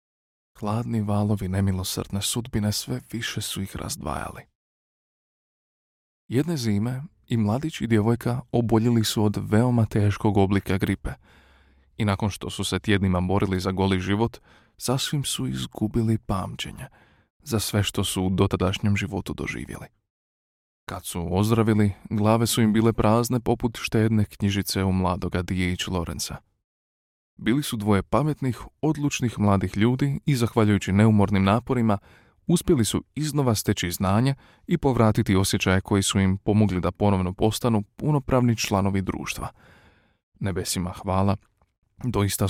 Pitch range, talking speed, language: 95-115 Hz, 130 wpm, Croatian